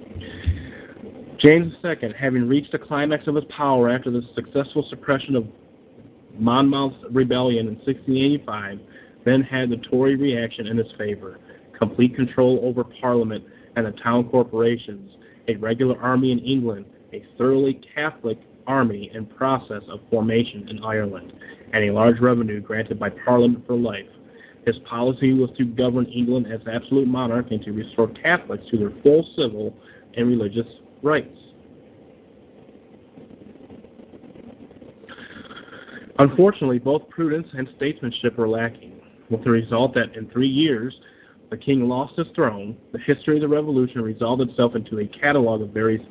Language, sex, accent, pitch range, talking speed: English, male, American, 115-135 Hz, 140 wpm